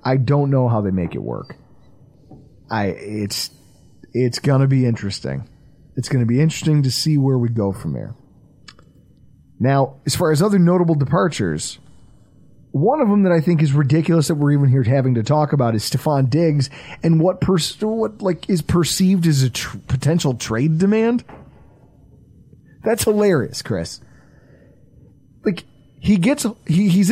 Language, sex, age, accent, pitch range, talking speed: English, male, 30-49, American, 130-175 Hz, 165 wpm